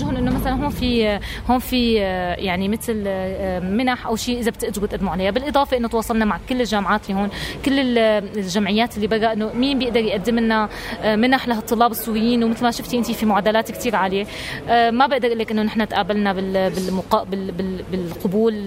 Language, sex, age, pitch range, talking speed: Arabic, female, 20-39, 210-245 Hz, 165 wpm